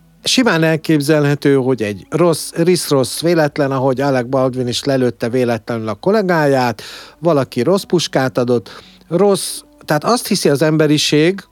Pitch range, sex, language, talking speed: 110-150 Hz, male, Hungarian, 130 wpm